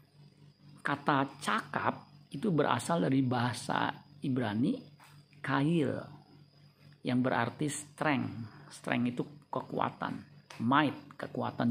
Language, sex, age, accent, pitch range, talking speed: Indonesian, male, 50-69, native, 135-150 Hz, 80 wpm